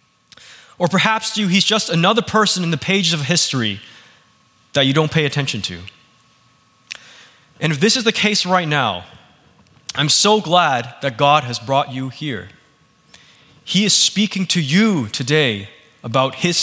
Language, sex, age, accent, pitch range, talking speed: English, male, 20-39, American, 145-195 Hz, 160 wpm